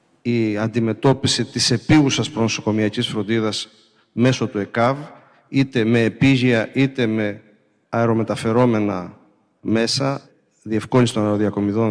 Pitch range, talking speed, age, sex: 110-135 Hz, 95 wpm, 50-69, male